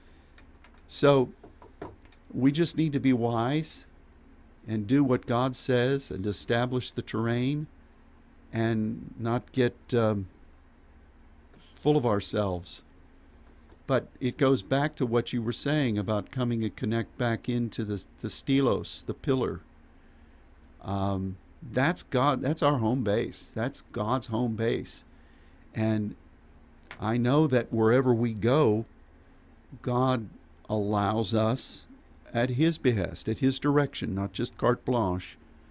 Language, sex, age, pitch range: English, male, 50-69, 85-130 Hz